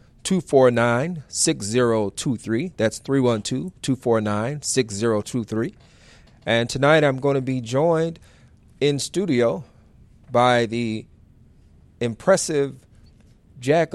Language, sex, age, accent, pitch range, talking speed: English, male, 40-59, American, 105-130 Hz, 95 wpm